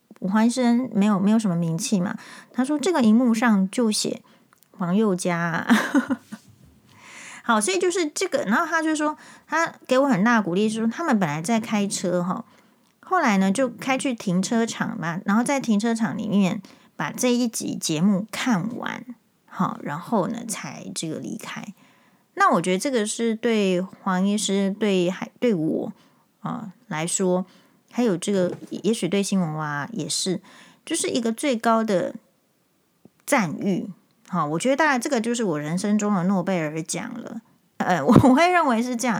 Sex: female